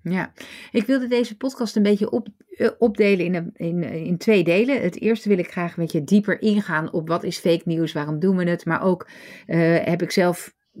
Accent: Dutch